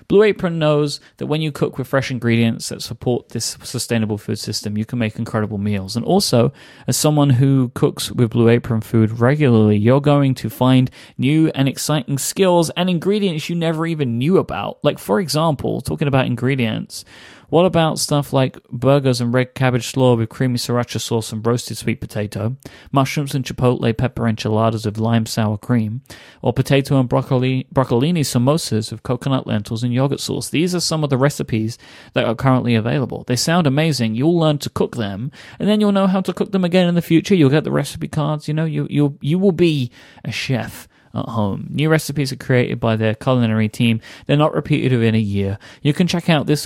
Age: 30-49